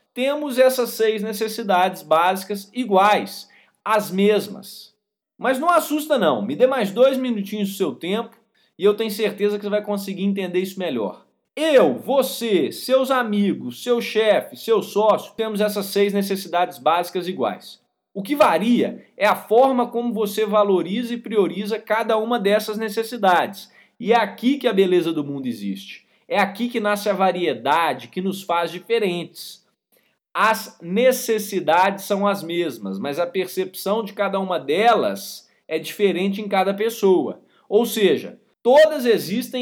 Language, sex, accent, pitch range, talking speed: Portuguese, male, Brazilian, 190-235 Hz, 150 wpm